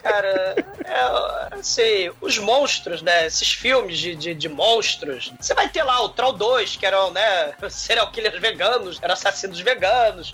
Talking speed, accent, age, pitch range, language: 170 wpm, Brazilian, 20-39, 210-335 Hz, Portuguese